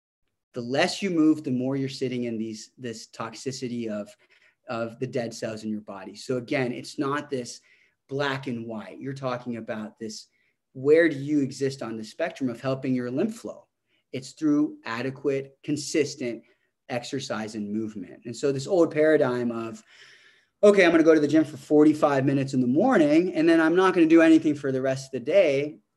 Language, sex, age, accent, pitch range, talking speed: English, male, 30-49, American, 115-145 Hz, 195 wpm